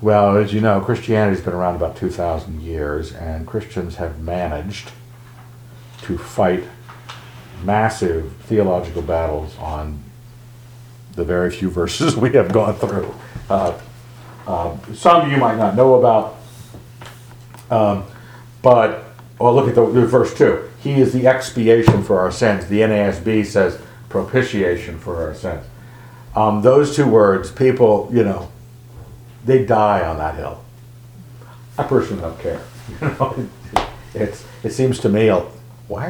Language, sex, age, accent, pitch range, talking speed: English, male, 60-79, American, 95-120 Hz, 140 wpm